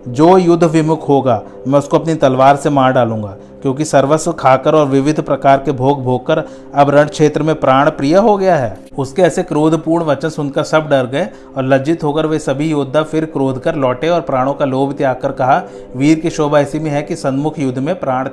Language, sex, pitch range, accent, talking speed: Hindi, male, 130-150 Hz, native, 160 wpm